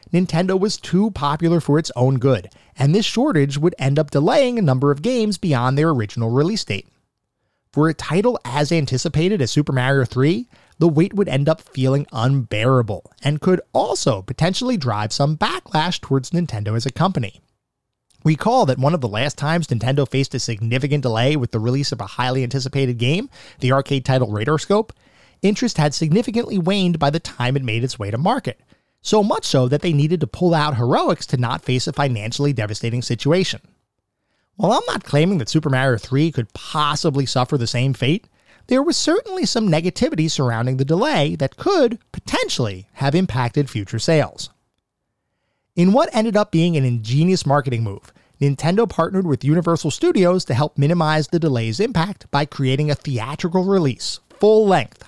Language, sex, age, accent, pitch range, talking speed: English, male, 30-49, American, 130-175 Hz, 175 wpm